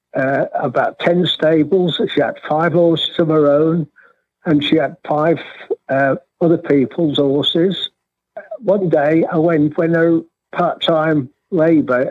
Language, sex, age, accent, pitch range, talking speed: English, male, 60-79, British, 140-175 Hz, 135 wpm